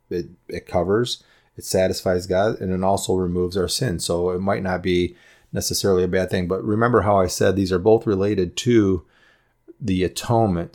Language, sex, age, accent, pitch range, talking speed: English, male, 30-49, American, 90-100 Hz, 185 wpm